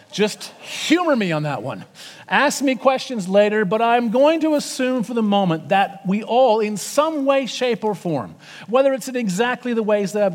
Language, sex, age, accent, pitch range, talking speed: English, male, 40-59, American, 160-240 Hz, 205 wpm